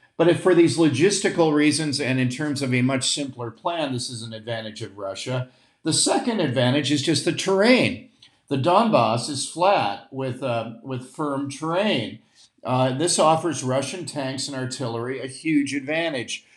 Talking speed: 165 wpm